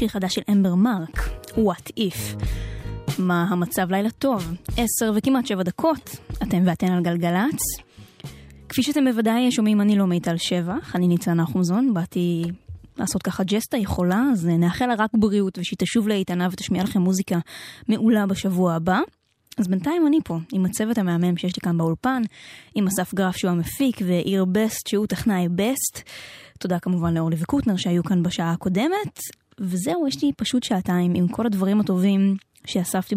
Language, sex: Hebrew, female